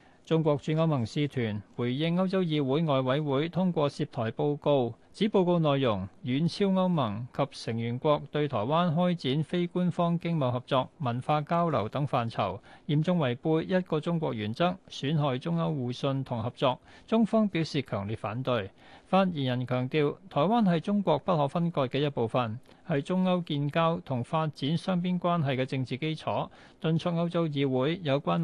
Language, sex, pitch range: Chinese, male, 125-170 Hz